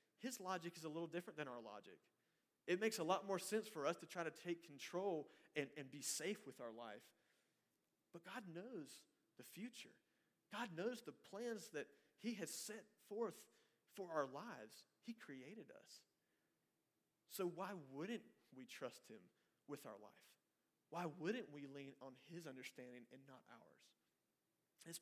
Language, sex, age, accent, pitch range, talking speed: English, male, 40-59, American, 135-175 Hz, 165 wpm